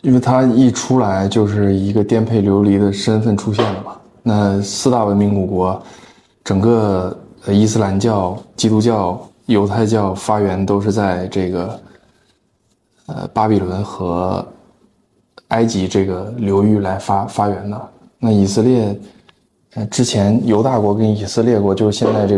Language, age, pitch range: Chinese, 20-39, 95-110 Hz